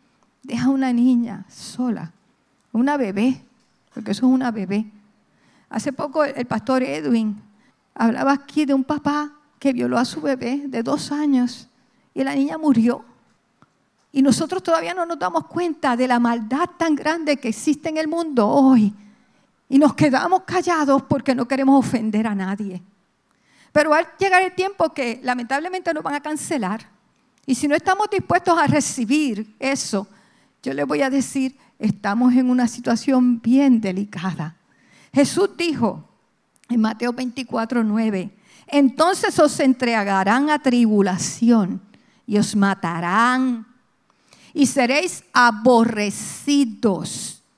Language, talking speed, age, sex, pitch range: English, 135 wpm, 50-69, female, 220-290 Hz